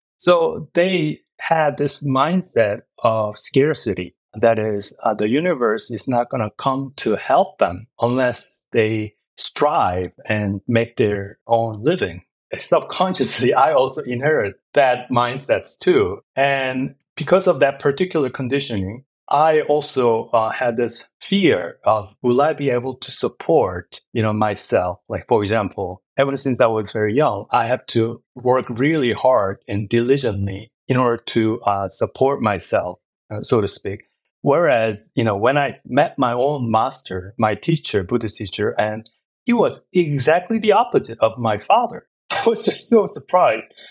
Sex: male